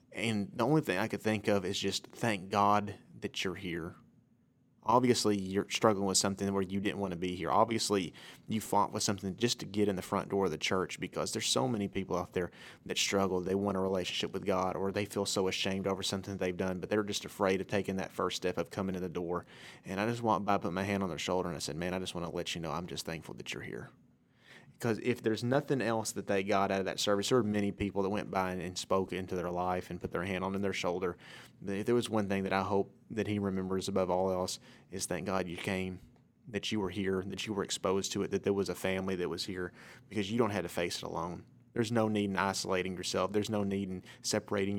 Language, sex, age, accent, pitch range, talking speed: English, male, 30-49, American, 95-105 Hz, 260 wpm